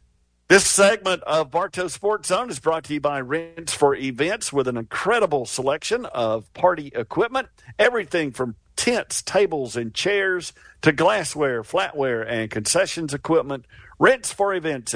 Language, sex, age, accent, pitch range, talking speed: English, male, 50-69, American, 130-185 Hz, 145 wpm